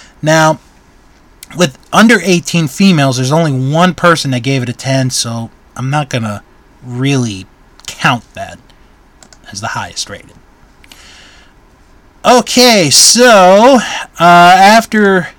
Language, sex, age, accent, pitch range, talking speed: English, male, 30-49, American, 130-220 Hz, 115 wpm